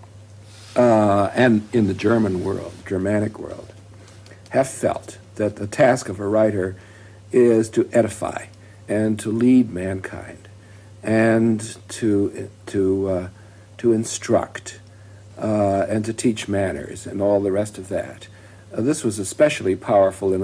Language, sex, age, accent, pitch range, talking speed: English, male, 60-79, American, 95-105 Hz, 135 wpm